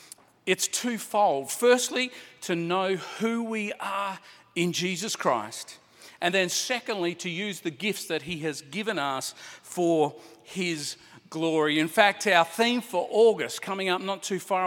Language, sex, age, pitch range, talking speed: English, male, 40-59, 165-215 Hz, 150 wpm